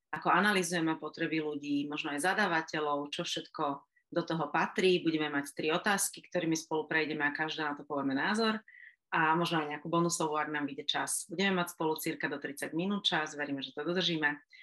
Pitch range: 150-180 Hz